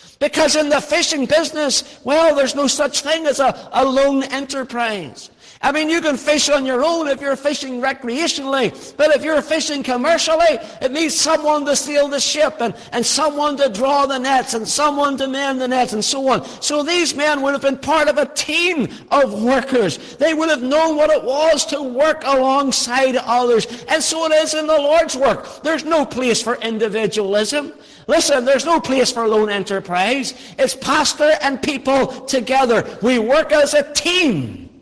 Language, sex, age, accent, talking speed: English, male, 60-79, American, 185 wpm